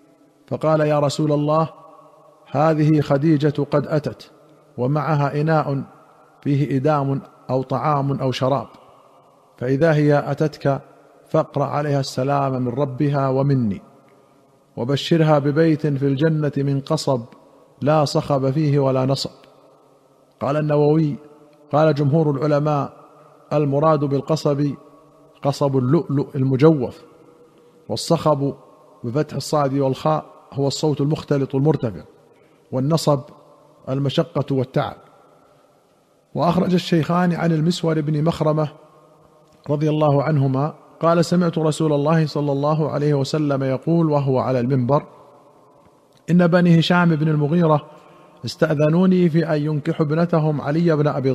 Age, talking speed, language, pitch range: 50-69, 105 wpm, Arabic, 140-155 Hz